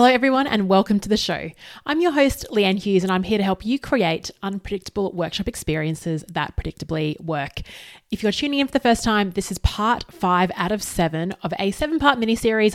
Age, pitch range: 20-39, 180-230 Hz